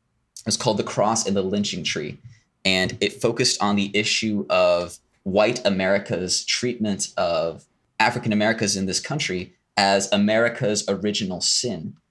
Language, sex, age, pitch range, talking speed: English, male, 20-39, 95-120 Hz, 140 wpm